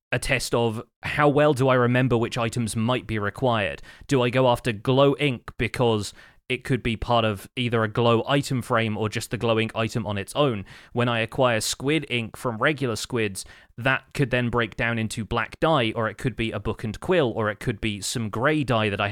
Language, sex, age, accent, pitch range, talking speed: English, male, 30-49, British, 110-125 Hz, 225 wpm